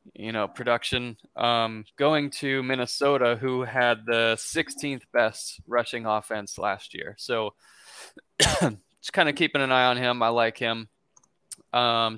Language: English